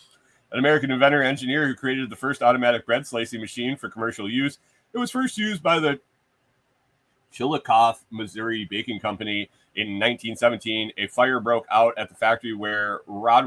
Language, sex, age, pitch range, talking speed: English, male, 30-49, 110-135 Hz, 160 wpm